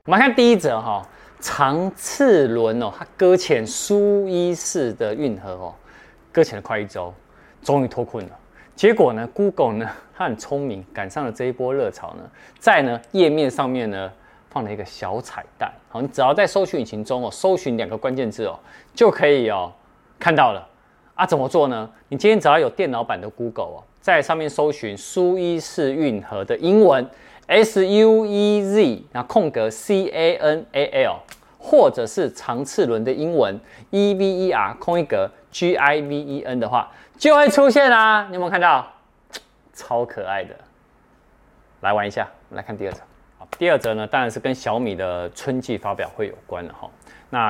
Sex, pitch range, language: male, 115-190 Hz, Chinese